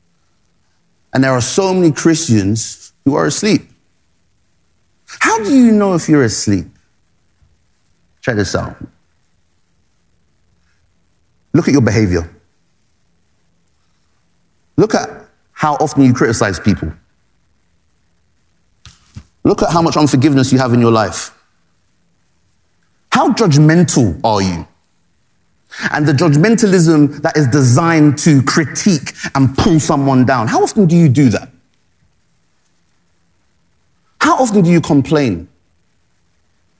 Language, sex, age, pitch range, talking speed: English, male, 30-49, 85-145 Hz, 110 wpm